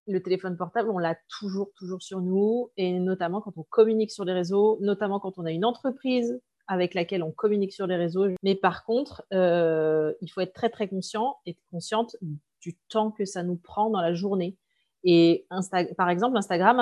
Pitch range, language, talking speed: 175-220 Hz, French, 200 wpm